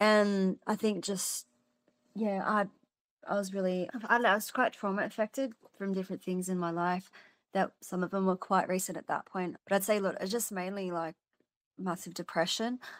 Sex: female